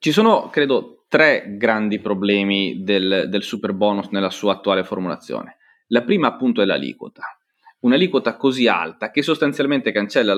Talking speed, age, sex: 145 wpm, 30-49, male